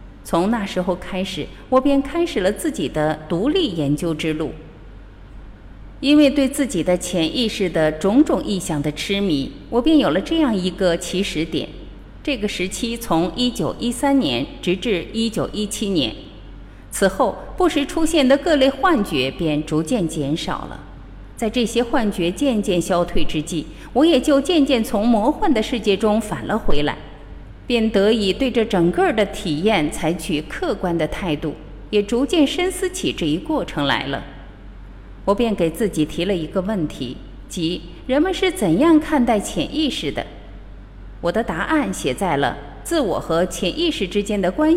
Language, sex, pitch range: Chinese, female, 155-250 Hz